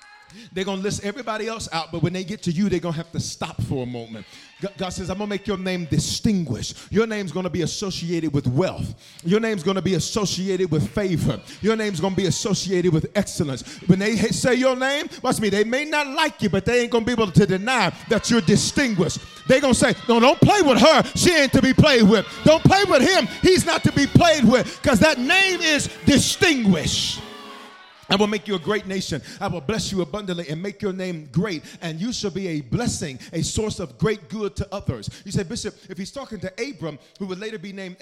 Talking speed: 240 wpm